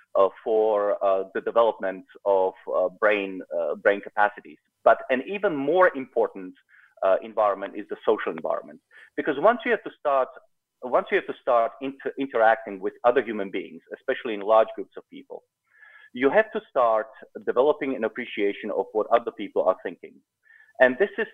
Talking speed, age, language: 170 wpm, 40-59, English